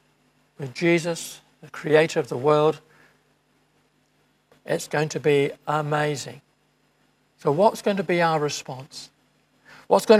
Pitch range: 135-170 Hz